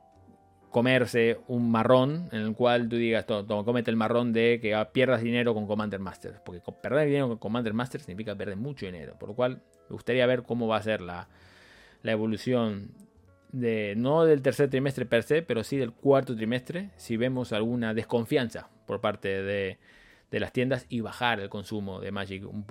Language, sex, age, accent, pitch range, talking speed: Spanish, male, 20-39, Argentinian, 105-125 Hz, 185 wpm